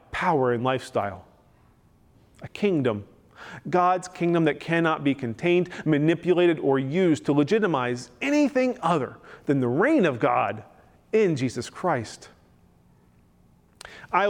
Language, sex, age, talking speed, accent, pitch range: English, male, 40-59, 115 wpm, American, 125-170 Hz